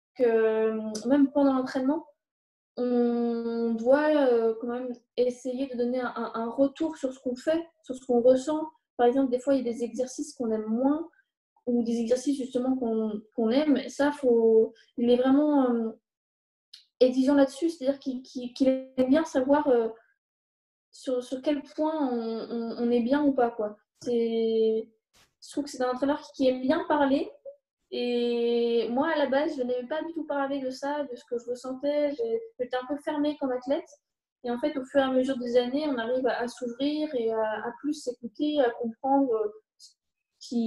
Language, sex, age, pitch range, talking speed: French, female, 20-39, 235-280 Hz, 180 wpm